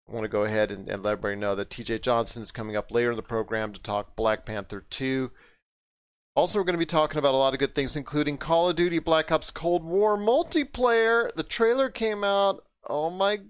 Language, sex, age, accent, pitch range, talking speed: English, male, 40-59, American, 130-200 Hz, 230 wpm